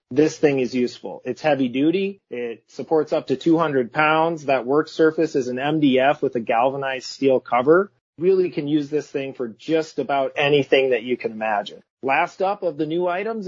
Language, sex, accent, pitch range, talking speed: English, male, American, 135-165 Hz, 190 wpm